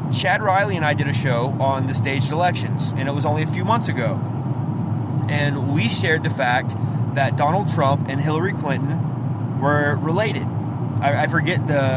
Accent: American